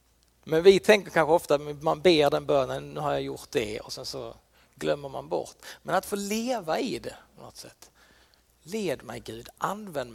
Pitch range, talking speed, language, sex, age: 150-195 Hz, 195 wpm, Swedish, male, 40-59